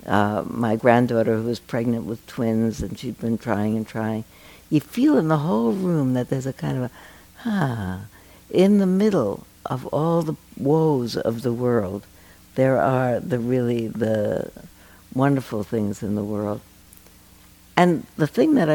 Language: English